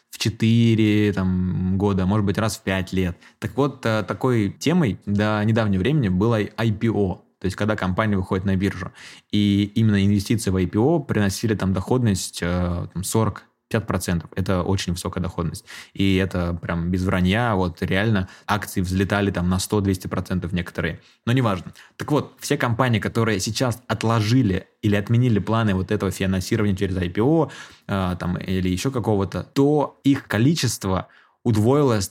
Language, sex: Russian, male